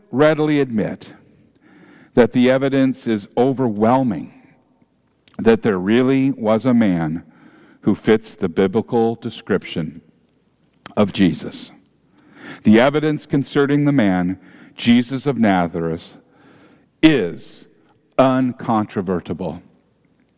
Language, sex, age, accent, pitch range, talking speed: English, male, 50-69, American, 110-155 Hz, 90 wpm